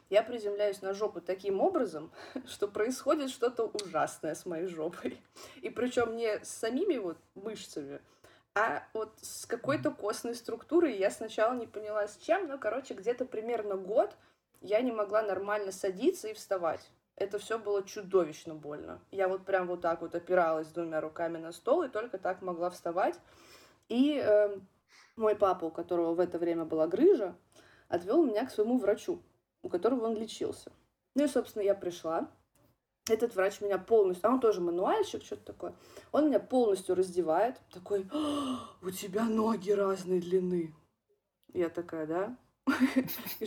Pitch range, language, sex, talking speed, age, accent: 180-240 Hz, Russian, female, 155 wpm, 20-39, native